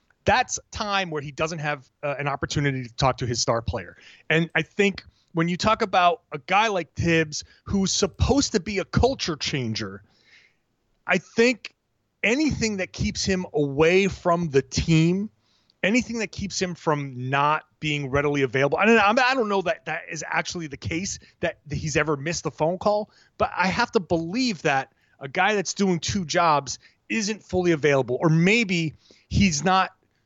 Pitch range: 145-195 Hz